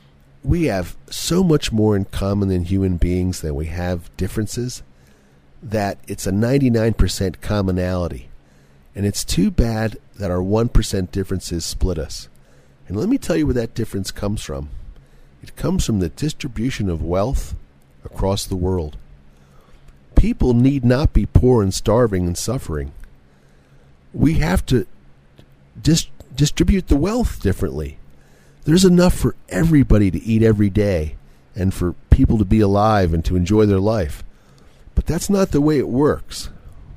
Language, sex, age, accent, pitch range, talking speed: English, male, 50-69, American, 70-110 Hz, 150 wpm